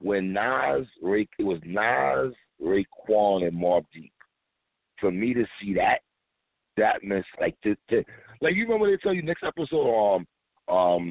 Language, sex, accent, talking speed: English, male, American, 165 wpm